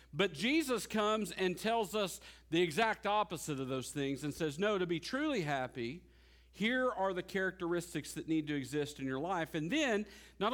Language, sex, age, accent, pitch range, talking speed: English, male, 50-69, American, 160-225 Hz, 190 wpm